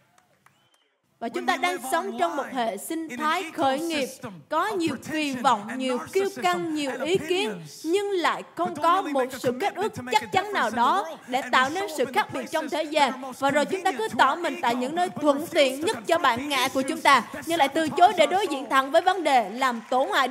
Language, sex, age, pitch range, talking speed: Vietnamese, female, 20-39, 250-340 Hz, 225 wpm